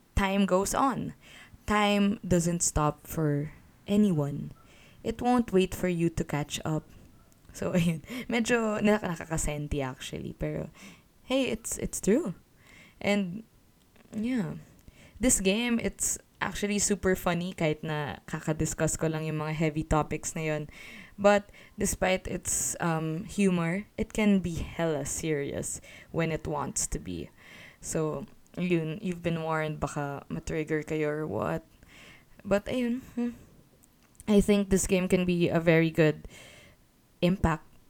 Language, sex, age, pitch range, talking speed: English, female, 20-39, 155-200 Hz, 130 wpm